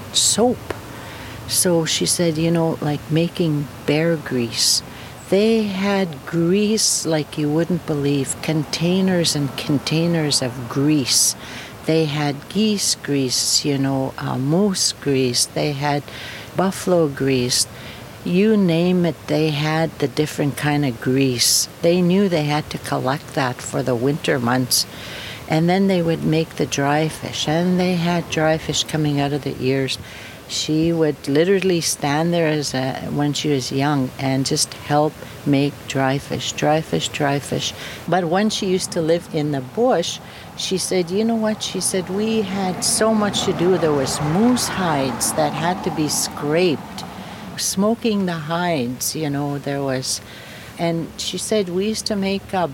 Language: English